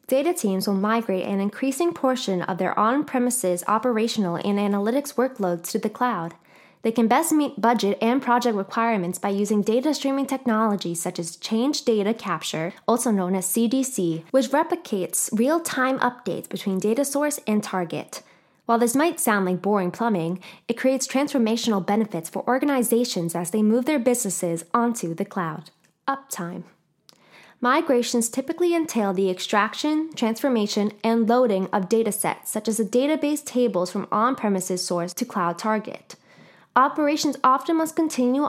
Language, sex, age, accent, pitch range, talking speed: English, female, 10-29, American, 195-260 Hz, 150 wpm